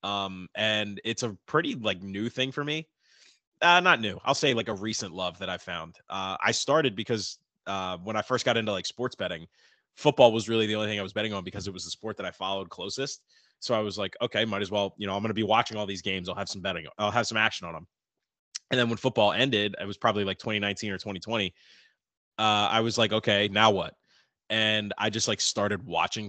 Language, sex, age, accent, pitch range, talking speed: English, male, 20-39, American, 100-115 Hz, 245 wpm